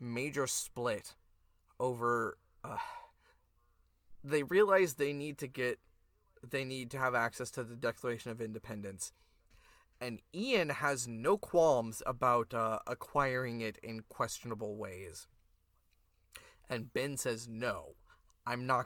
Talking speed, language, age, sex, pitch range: 120 wpm, English, 20-39, male, 105-150 Hz